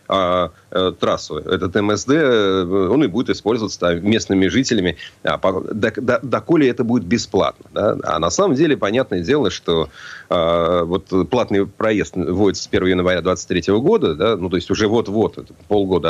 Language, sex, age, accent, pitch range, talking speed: Russian, male, 30-49, native, 95-130 Hz, 160 wpm